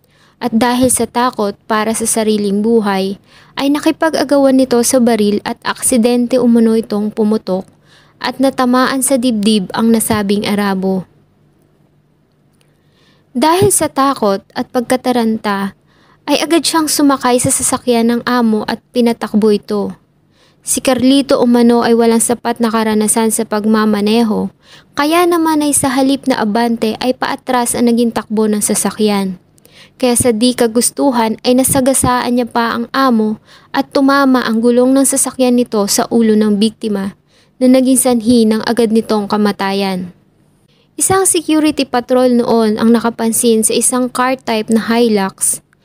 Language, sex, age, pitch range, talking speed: English, female, 20-39, 220-255 Hz, 135 wpm